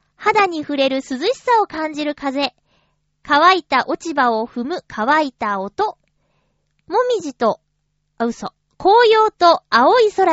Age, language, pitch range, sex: 20-39, Japanese, 255-365 Hz, female